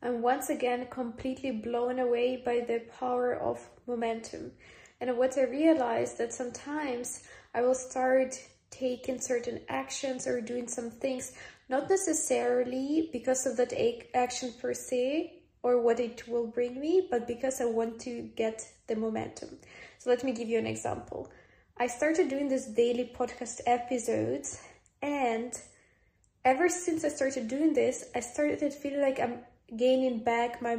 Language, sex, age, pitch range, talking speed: English, female, 20-39, 235-265 Hz, 155 wpm